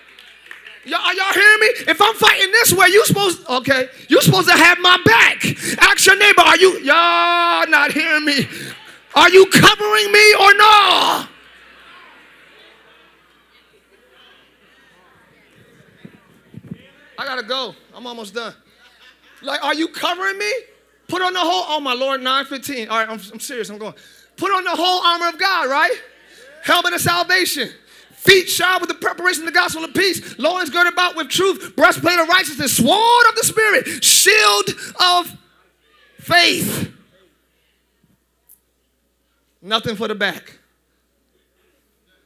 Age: 30-49